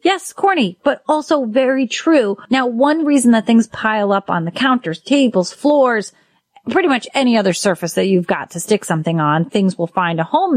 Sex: female